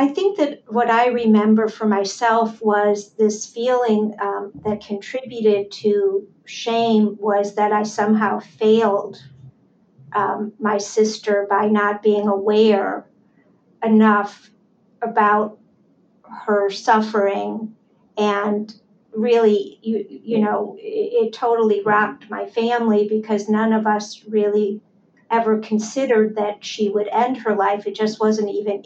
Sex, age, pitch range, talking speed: female, 50-69, 205-225 Hz, 125 wpm